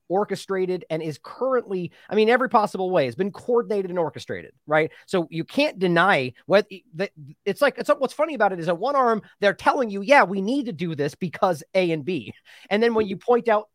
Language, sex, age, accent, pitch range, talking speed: English, male, 30-49, American, 150-210 Hz, 225 wpm